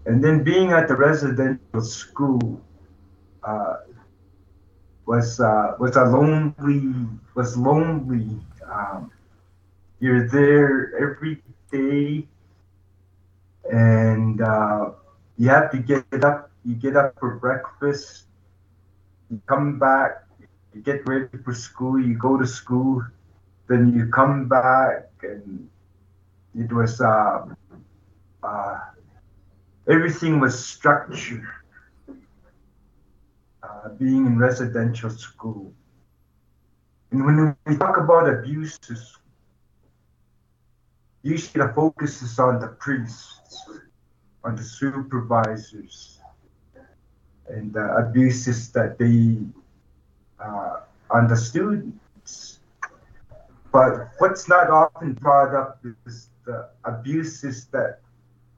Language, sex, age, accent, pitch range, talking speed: English, male, 50-69, American, 100-140 Hz, 95 wpm